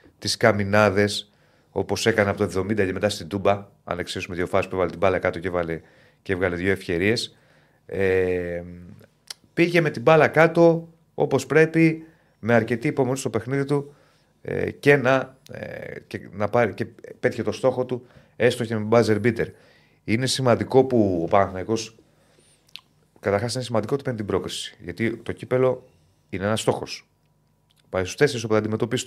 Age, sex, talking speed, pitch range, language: 30-49, male, 165 wpm, 100-130 Hz, Greek